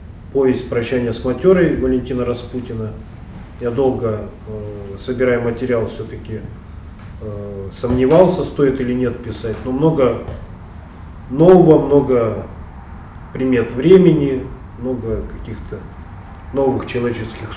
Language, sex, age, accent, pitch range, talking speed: Russian, male, 30-49, native, 110-130 Hz, 90 wpm